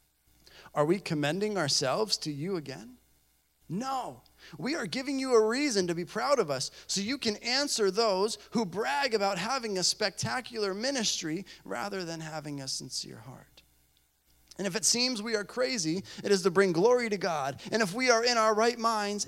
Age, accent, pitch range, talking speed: 30-49, American, 160-225 Hz, 185 wpm